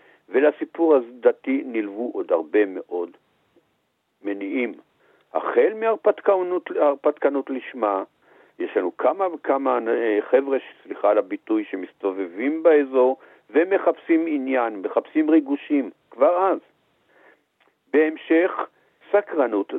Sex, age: male, 60-79